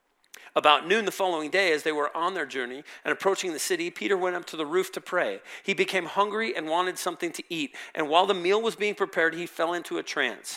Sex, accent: male, American